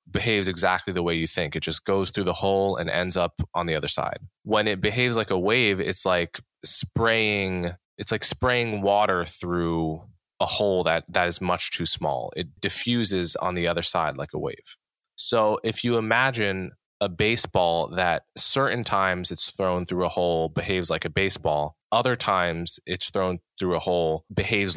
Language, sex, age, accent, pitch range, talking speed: English, male, 20-39, American, 85-110 Hz, 185 wpm